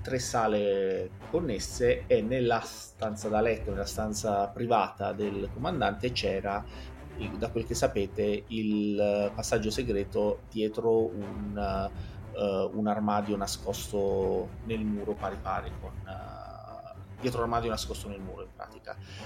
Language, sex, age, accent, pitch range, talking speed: Italian, male, 30-49, native, 100-115 Hz, 125 wpm